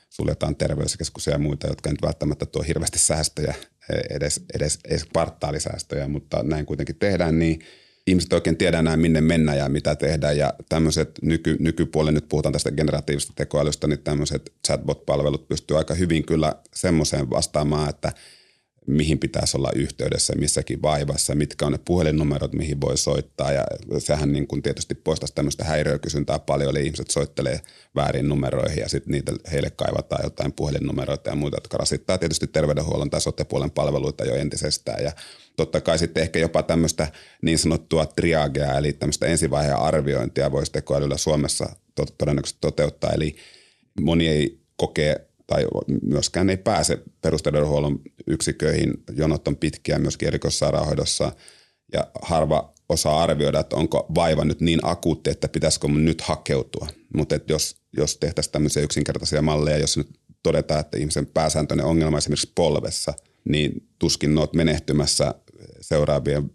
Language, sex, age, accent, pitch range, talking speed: Finnish, male, 30-49, native, 75-80 Hz, 145 wpm